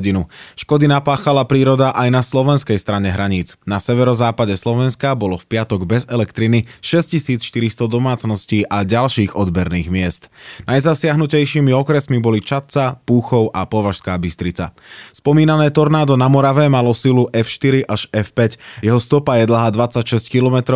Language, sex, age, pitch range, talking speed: Slovak, male, 20-39, 105-135 Hz, 130 wpm